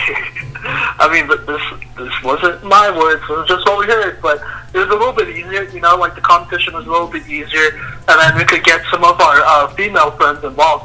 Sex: male